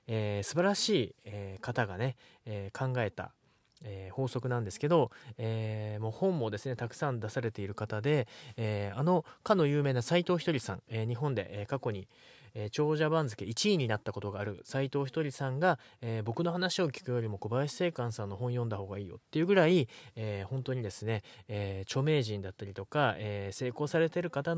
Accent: native